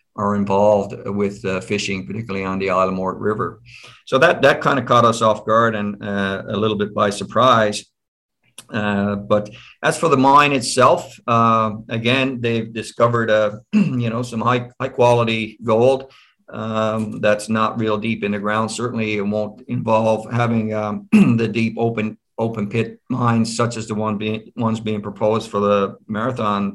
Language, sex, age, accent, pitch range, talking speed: English, male, 50-69, American, 110-120 Hz, 170 wpm